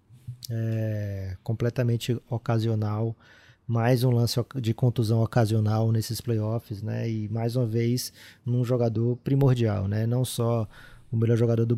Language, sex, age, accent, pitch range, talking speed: Portuguese, male, 20-39, Brazilian, 110-125 Hz, 125 wpm